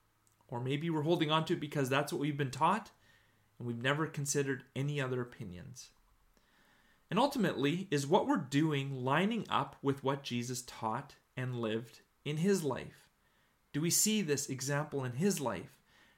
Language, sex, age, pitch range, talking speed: English, male, 30-49, 125-165 Hz, 165 wpm